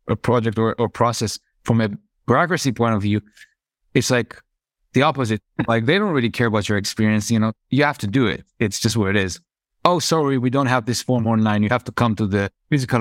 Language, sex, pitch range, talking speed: English, male, 115-150 Hz, 230 wpm